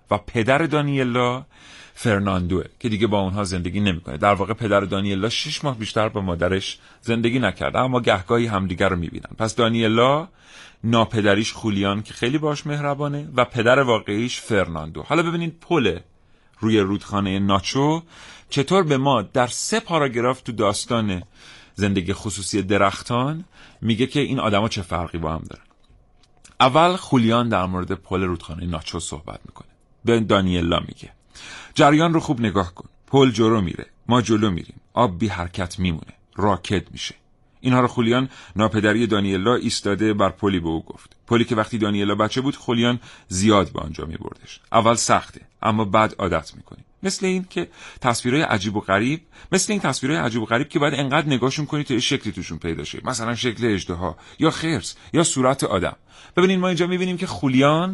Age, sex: 40-59, male